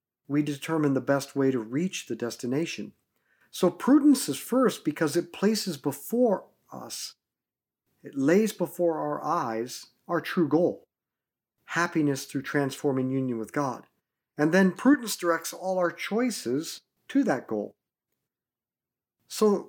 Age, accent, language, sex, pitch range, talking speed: 50-69, American, English, male, 135-180 Hz, 130 wpm